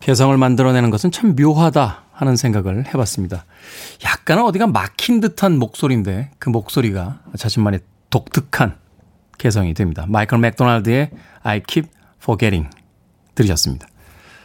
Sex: male